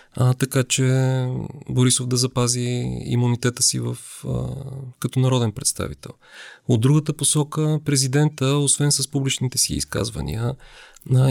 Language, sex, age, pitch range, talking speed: English, male, 40-59, 120-145 Hz, 120 wpm